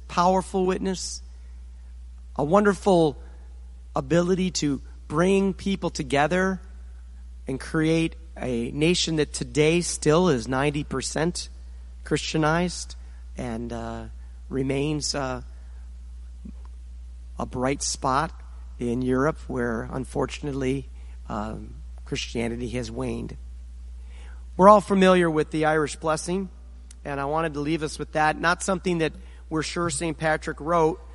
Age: 40-59